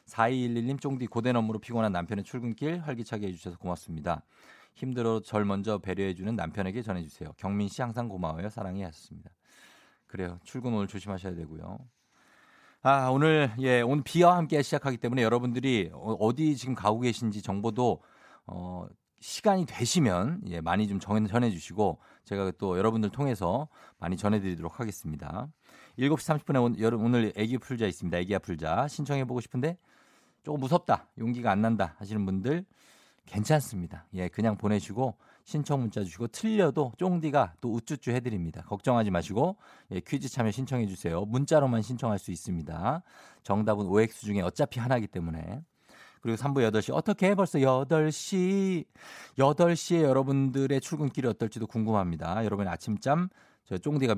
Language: Korean